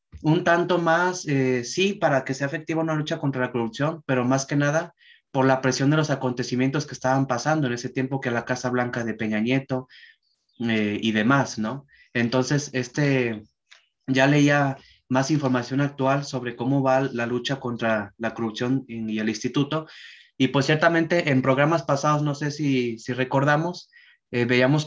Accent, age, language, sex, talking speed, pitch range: Mexican, 20-39, Spanish, male, 175 wpm, 125-150 Hz